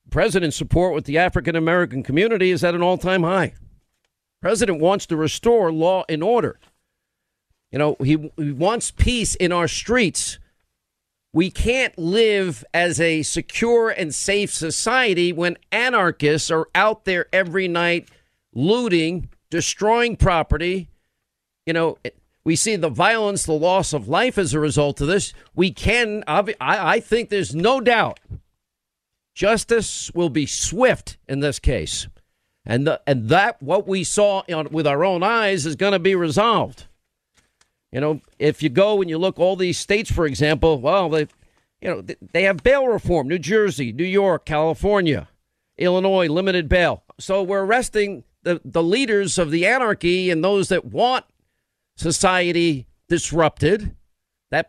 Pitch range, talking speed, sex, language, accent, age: 155-195 Hz, 155 wpm, male, English, American, 50-69